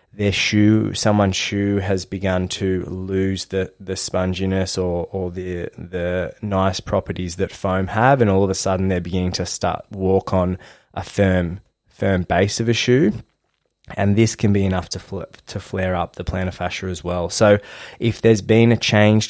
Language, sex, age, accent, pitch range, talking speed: English, male, 20-39, Australian, 90-100 Hz, 185 wpm